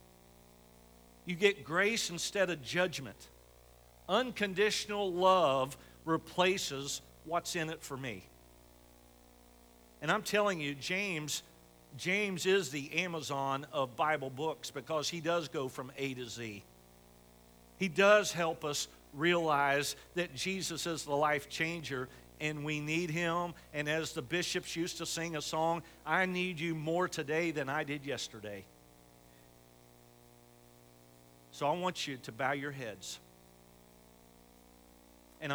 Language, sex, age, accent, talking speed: English, male, 50-69, American, 130 wpm